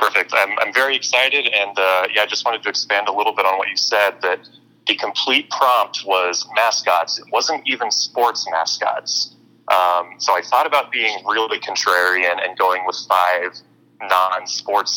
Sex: male